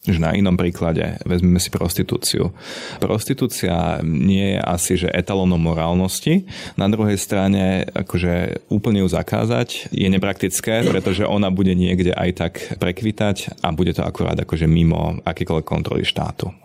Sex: male